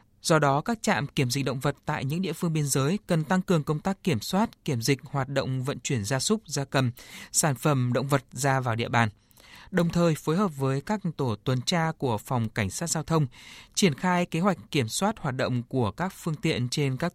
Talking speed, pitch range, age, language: 240 wpm, 120-160 Hz, 20-39, Vietnamese